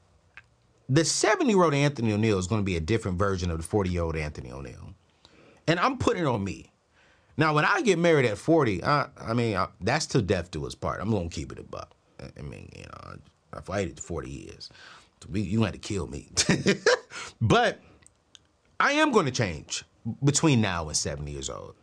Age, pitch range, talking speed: 30-49, 95-165 Hz, 200 wpm